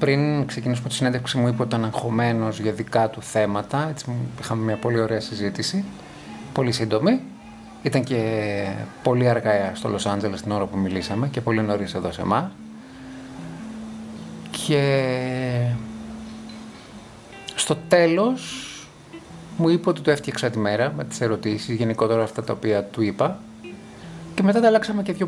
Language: Greek